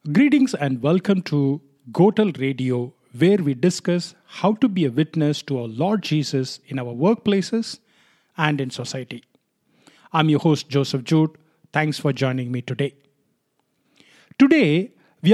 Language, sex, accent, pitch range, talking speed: English, male, Indian, 150-210 Hz, 140 wpm